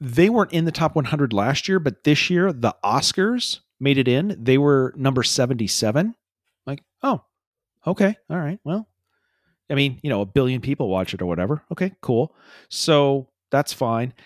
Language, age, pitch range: English, 40-59, 105-150 Hz